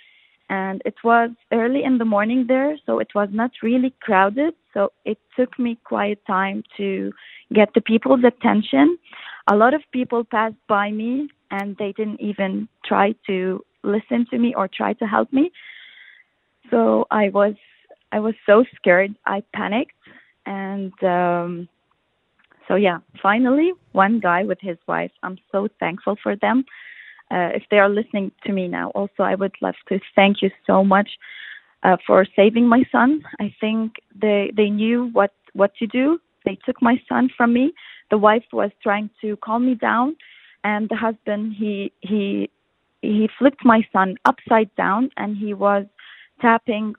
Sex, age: female, 20-39